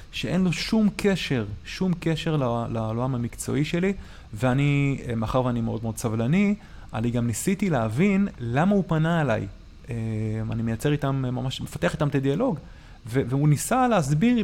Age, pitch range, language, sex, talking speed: 30-49, 115-150 Hz, Hebrew, male, 140 wpm